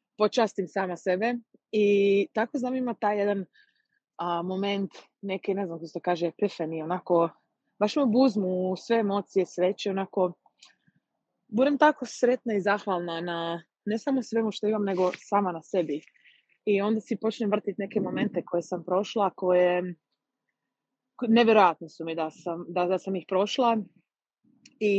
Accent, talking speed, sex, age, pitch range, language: native, 155 wpm, female, 20-39, 185-230 Hz, Croatian